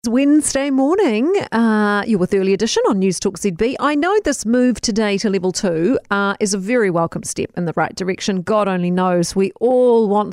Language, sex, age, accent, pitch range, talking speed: English, female, 40-59, Australian, 185-245 Hz, 200 wpm